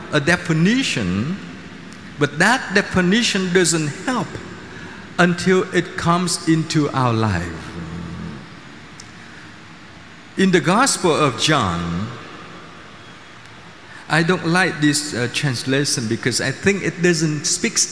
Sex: male